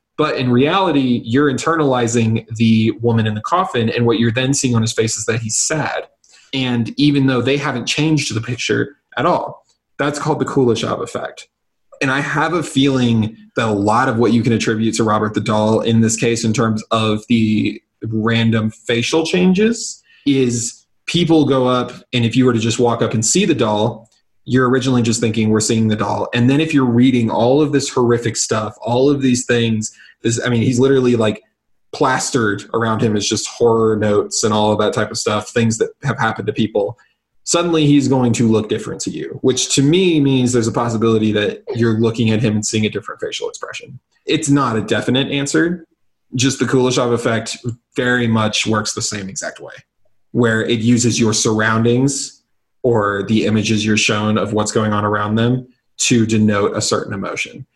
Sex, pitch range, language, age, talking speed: male, 110-130 Hz, English, 20-39, 195 wpm